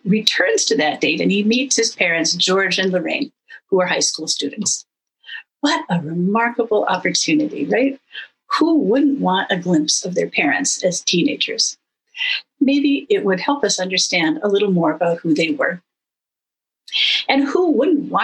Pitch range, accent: 185-285 Hz, American